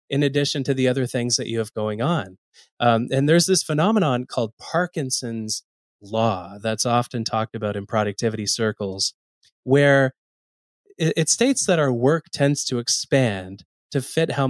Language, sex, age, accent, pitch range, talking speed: English, male, 20-39, American, 110-145 Hz, 155 wpm